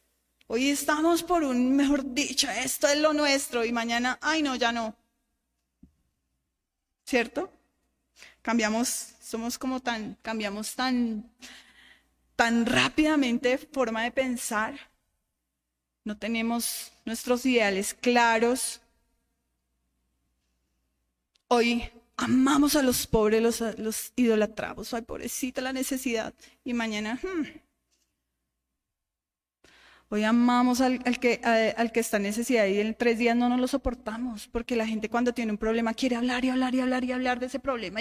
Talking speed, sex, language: 130 wpm, female, Spanish